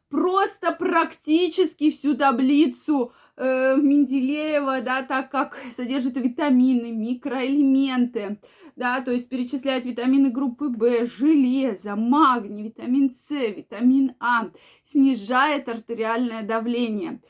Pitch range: 235-295 Hz